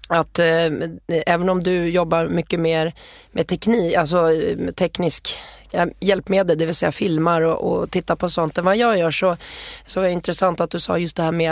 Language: English